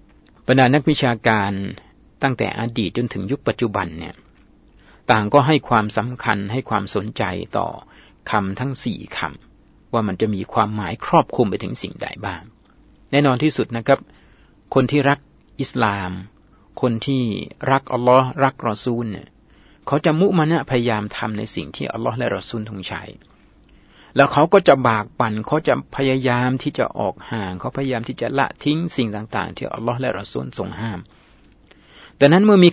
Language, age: Thai, 60-79